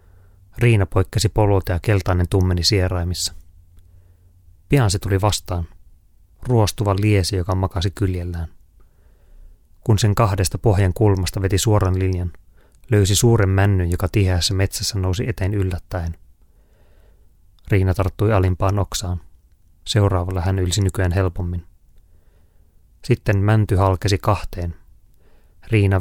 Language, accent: Finnish, native